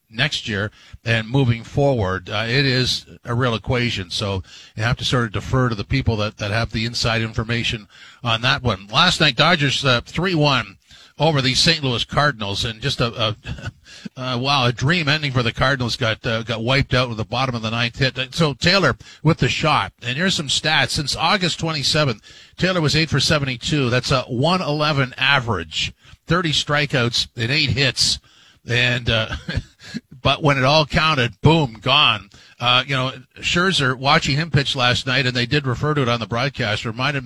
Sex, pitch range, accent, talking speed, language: male, 115-145 Hz, American, 190 wpm, English